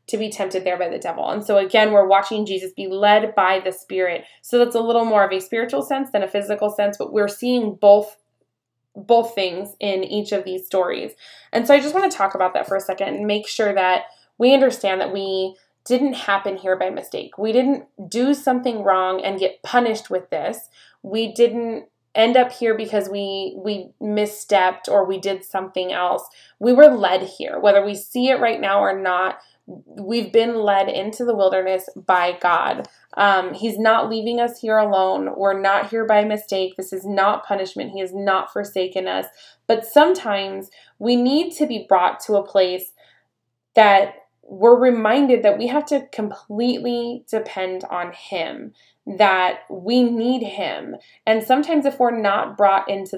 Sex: female